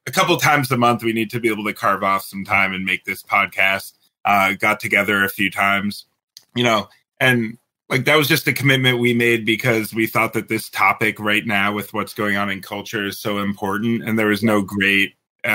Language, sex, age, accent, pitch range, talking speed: English, male, 30-49, American, 105-120 Hz, 225 wpm